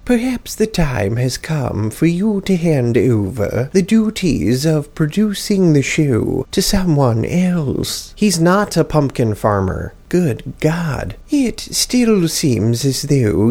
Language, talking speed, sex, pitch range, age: English, 140 wpm, male, 125-180 Hz, 30-49